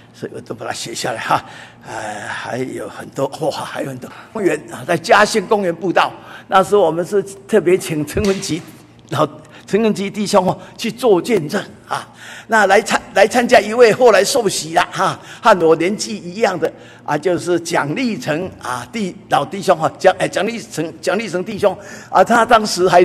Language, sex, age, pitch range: Chinese, male, 50-69, 185-245 Hz